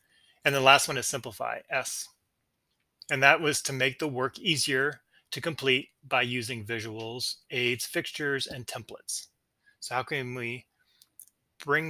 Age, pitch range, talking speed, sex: 30-49, 115-140 Hz, 145 wpm, male